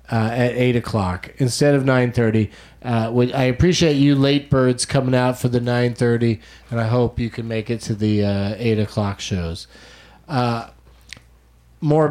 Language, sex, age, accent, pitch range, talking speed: English, male, 40-59, American, 110-135 Hz, 165 wpm